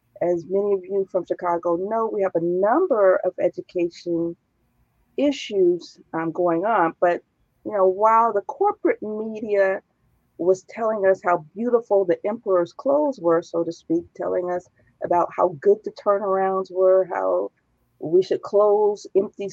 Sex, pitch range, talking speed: female, 175-220 Hz, 150 wpm